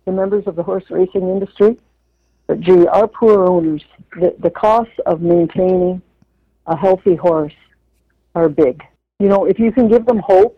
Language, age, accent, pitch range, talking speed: English, 60-79, American, 160-190 Hz, 170 wpm